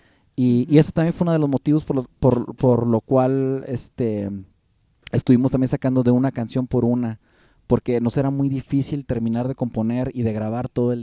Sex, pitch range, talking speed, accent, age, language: male, 120-140 Hz, 200 wpm, Mexican, 30-49, English